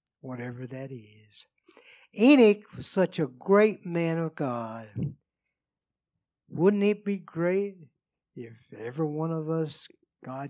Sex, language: male, English